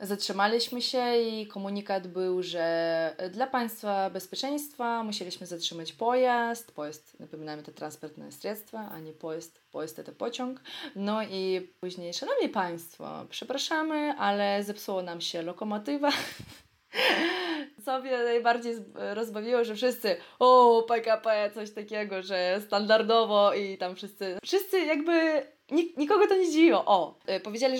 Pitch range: 180-235 Hz